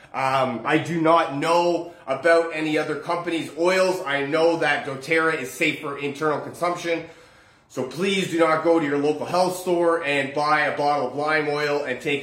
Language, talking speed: English, 185 wpm